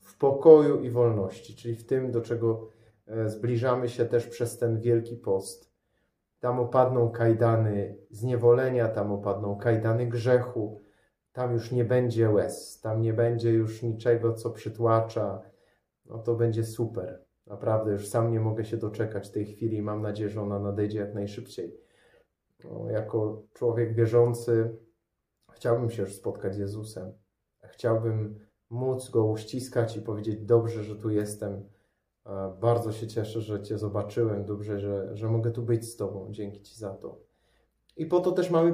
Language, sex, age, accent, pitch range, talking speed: Polish, male, 30-49, native, 105-120 Hz, 155 wpm